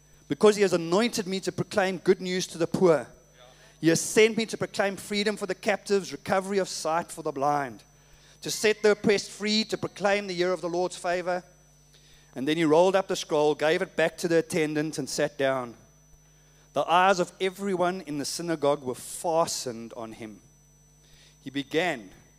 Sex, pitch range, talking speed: male, 150-185 Hz, 190 wpm